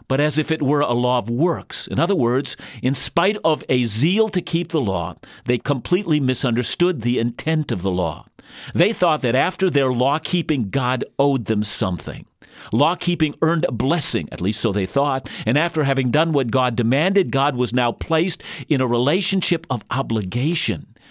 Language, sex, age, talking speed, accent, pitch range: English, male, 50-69, 180 wpm, American, 115-160 Hz